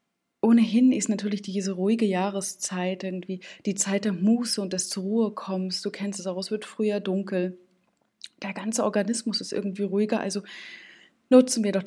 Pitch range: 185-220 Hz